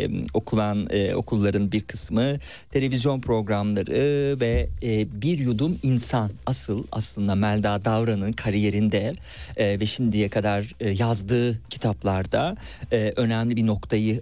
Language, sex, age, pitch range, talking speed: Turkish, male, 40-59, 105-125 Hz, 95 wpm